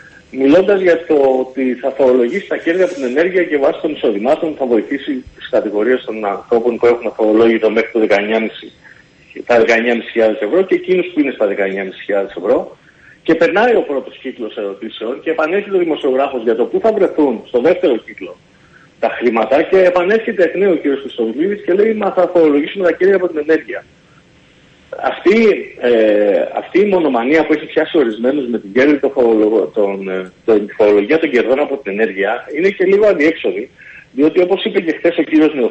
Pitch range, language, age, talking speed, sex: 120-185 Hz, Greek, 40-59, 175 wpm, male